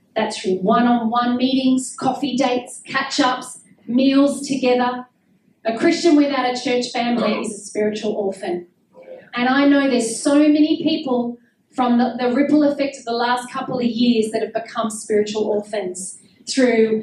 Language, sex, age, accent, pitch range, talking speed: English, female, 40-59, Australian, 230-285 Hz, 150 wpm